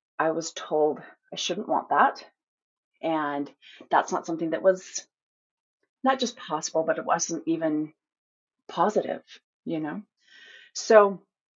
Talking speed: 125 wpm